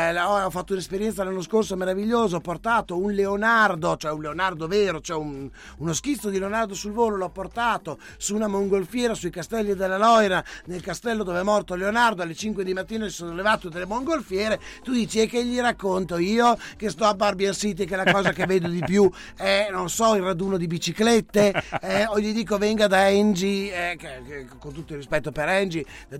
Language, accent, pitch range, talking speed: Italian, native, 160-210 Hz, 205 wpm